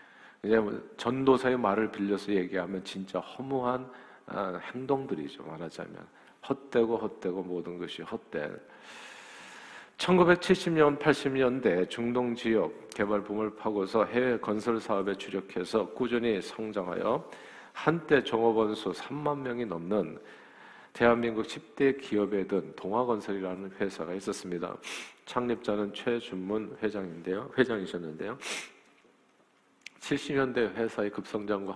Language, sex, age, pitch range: Korean, male, 50-69, 95-125 Hz